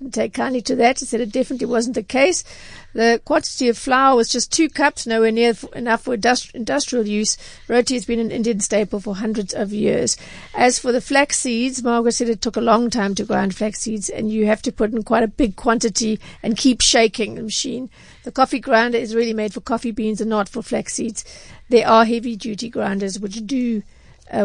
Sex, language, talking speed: female, English, 215 wpm